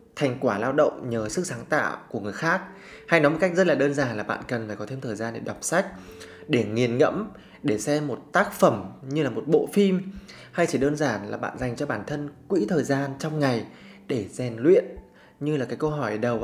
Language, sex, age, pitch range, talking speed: Vietnamese, male, 20-39, 115-155 Hz, 245 wpm